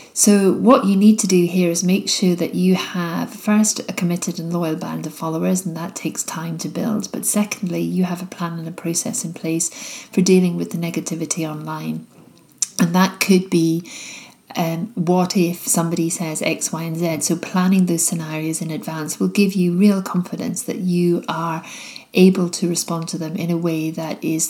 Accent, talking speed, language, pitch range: British, 200 wpm, English, 170-200 Hz